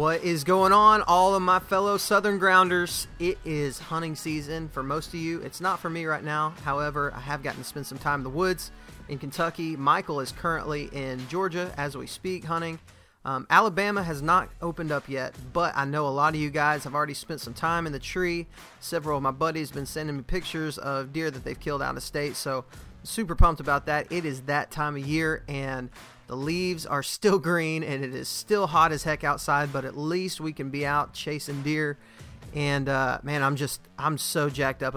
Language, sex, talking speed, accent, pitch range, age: English, male, 220 wpm, American, 135-165 Hz, 30-49